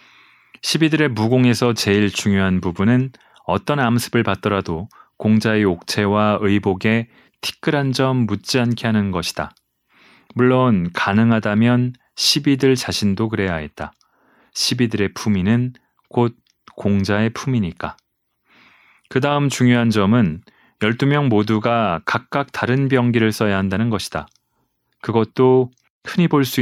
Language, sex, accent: Korean, male, native